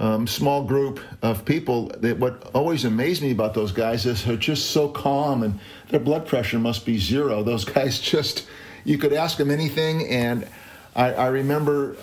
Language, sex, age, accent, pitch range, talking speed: English, male, 50-69, American, 110-130 Hz, 185 wpm